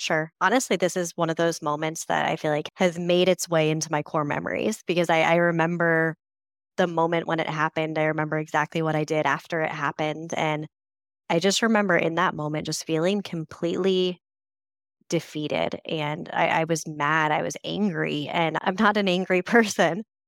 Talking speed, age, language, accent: 185 wpm, 20-39, English, American